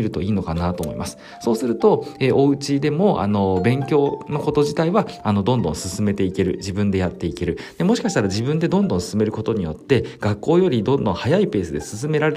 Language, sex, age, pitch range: Japanese, male, 40-59, 90-140 Hz